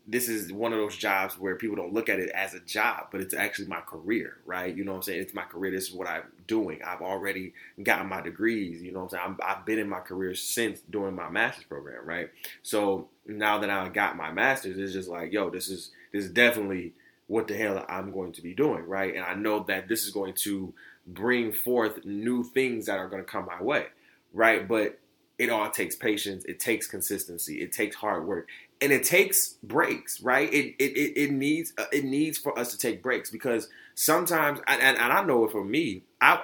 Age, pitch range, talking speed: 20-39, 95-115 Hz, 230 wpm